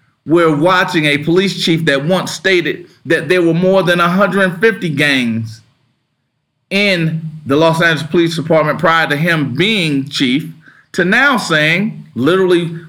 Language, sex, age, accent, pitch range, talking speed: English, male, 40-59, American, 135-175 Hz, 140 wpm